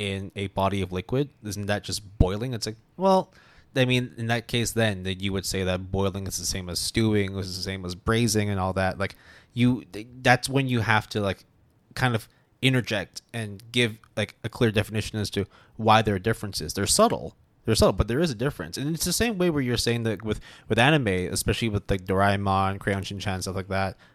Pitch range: 95-120 Hz